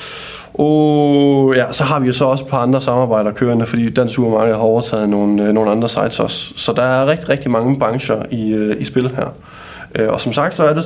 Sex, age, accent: male, 20-39, native